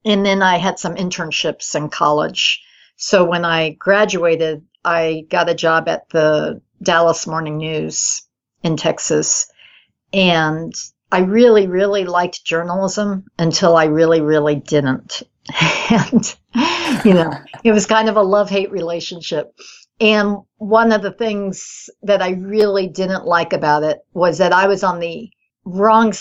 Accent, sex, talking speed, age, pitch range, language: American, female, 145 wpm, 60-79, 160-195 Hz, English